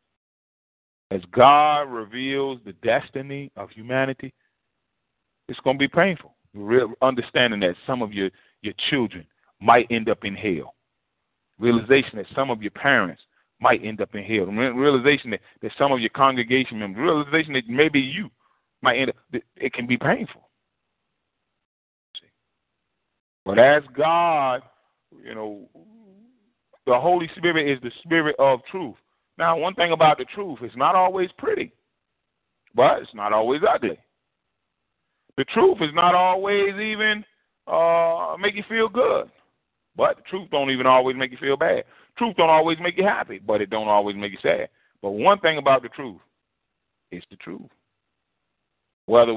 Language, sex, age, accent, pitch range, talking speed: English, male, 40-59, American, 120-175 Hz, 155 wpm